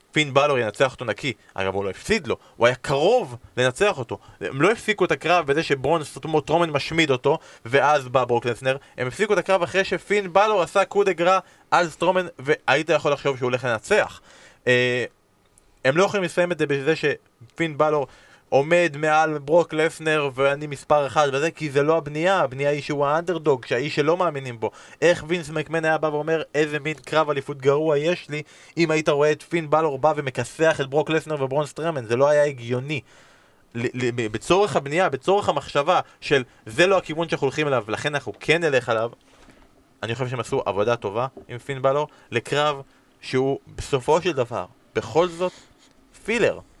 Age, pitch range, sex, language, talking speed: 20-39, 135-165 Hz, male, Hebrew, 180 wpm